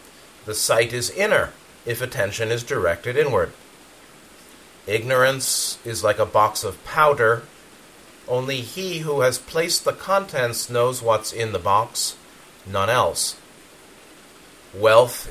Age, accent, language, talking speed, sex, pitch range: 40-59, American, English, 120 wpm, male, 105-140 Hz